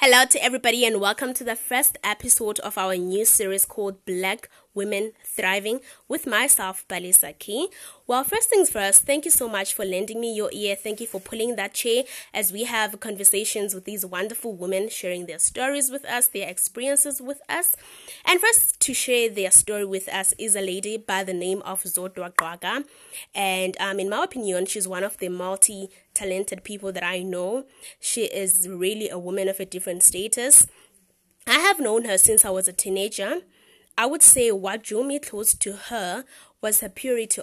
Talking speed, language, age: 190 wpm, English, 20-39